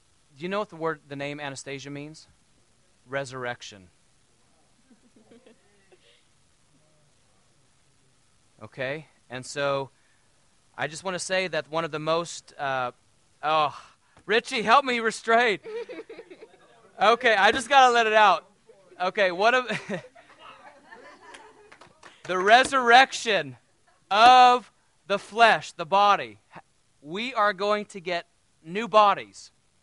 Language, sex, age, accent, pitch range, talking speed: English, male, 30-49, American, 145-230 Hz, 110 wpm